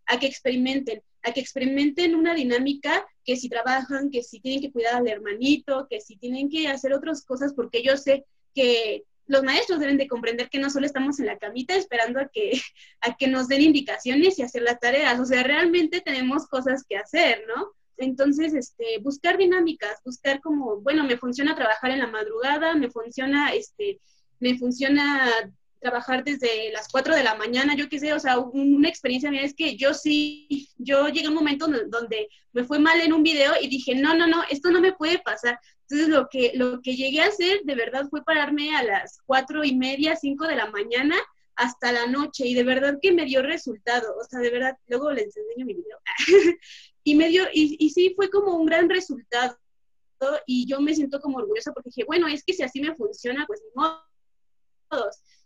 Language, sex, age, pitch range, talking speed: Spanish, female, 20-39, 250-315 Hz, 205 wpm